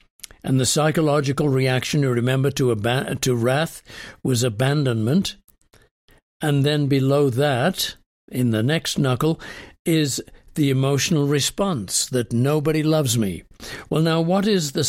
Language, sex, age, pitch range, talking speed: English, male, 60-79, 125-160 Hz, 135 wpm